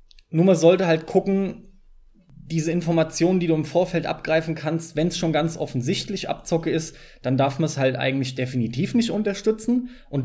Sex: male